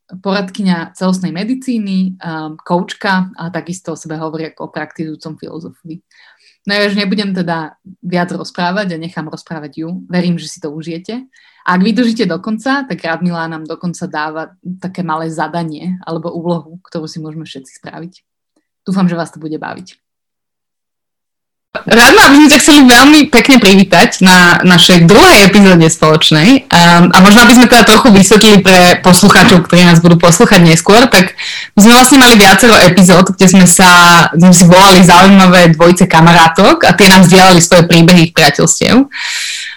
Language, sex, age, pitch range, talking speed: Slovak, female, 20-39, 170-210 Hz, 160 wpm